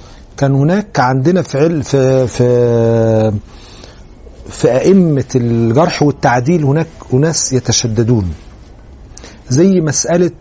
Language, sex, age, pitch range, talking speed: Arabic, male, 40-59, 105-155 Hz, 80 wpm